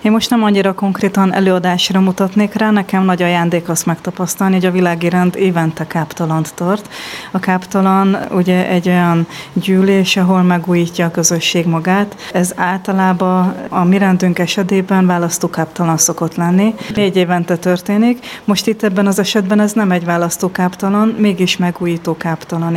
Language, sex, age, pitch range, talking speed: Hungarian, female, 30-49, 170-190 Hz, 140 wpm